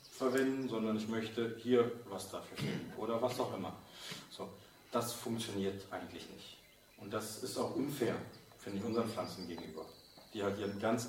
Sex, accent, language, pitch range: male, German, German, 105-120 Hz